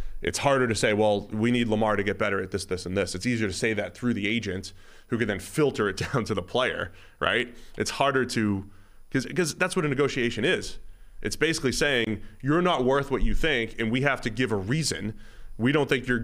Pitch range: 100-125 Hz